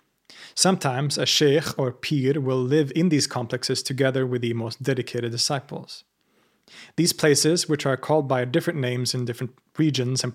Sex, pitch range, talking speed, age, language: male, 125-155 Hz, 160 wpm, 30-49, English